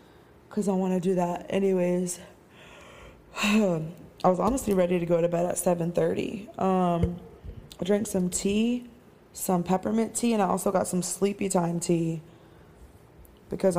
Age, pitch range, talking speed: 20-39, 175-205 Hz, 150 wpm